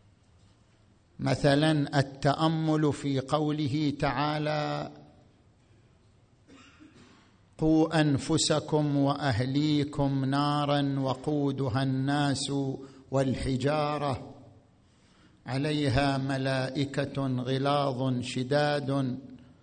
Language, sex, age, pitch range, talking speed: Arabic, male, 50-69, 130-155 Hz, 50 wpm